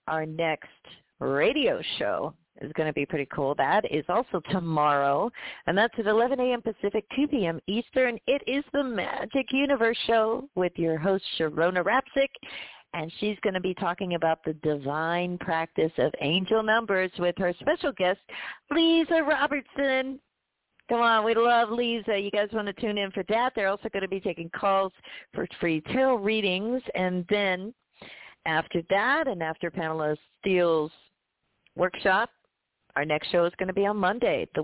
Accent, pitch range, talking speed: American, 170-230 Hz, 165 wpm